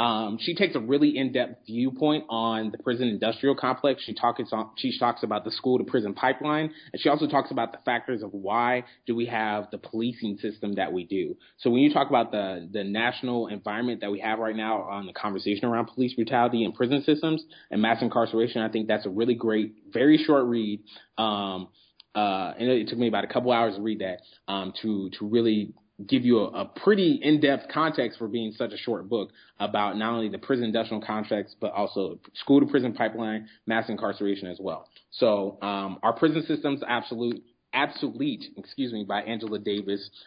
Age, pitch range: 20-39, 110-130 Hz